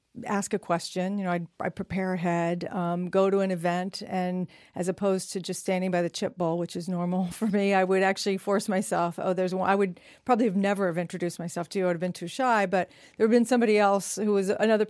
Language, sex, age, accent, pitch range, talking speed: English, female, 50-69, American, 180-205 Hz, 260 wpm